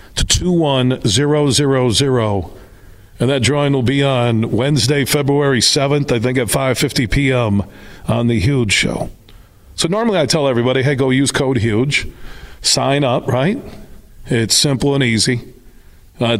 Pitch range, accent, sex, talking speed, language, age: 115-140 Hz, American, male, 135 wpm, English, 40-59